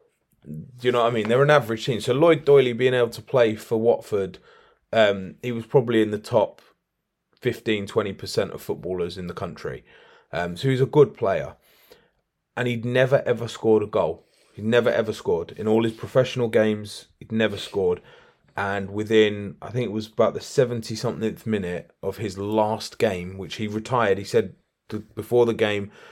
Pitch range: 100-120 Hz